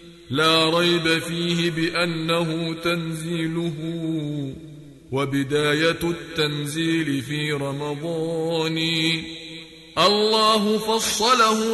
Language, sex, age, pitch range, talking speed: English, male, 50-69, 160-170 Hz, 55 wpm